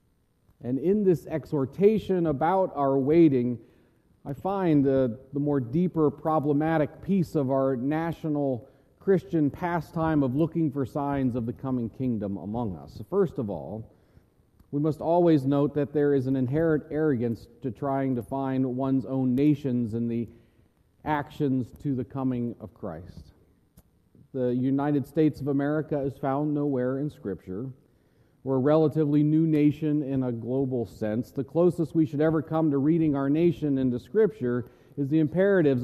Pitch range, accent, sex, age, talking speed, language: 120-150 Hz, American, male, 40-59, 155 wpm, English